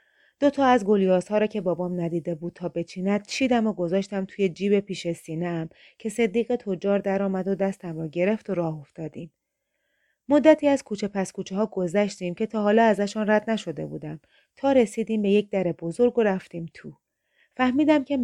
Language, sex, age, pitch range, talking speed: Persian, female, 30-49, 175-225 Hz, 185 wpm